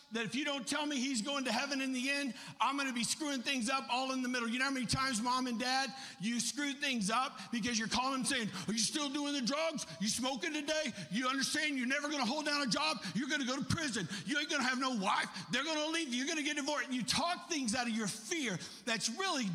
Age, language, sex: 50-69, English, male